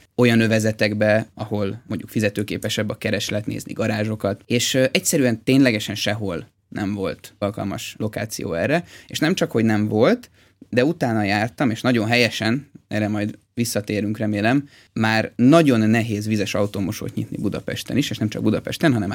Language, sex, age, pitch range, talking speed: Hungarian, male, 20-39, 105-125 Hz, 145 wpm